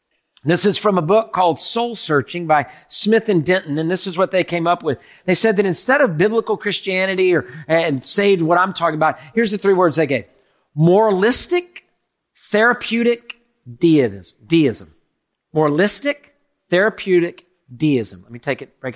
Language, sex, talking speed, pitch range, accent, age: English, male, 165 wpm, 150-225 Hz, American, 50-69